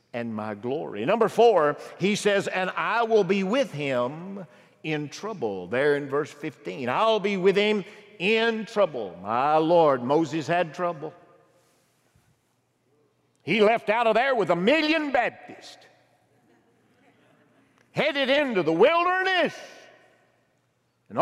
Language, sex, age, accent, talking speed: English, male, 50-69, American, 125 wpm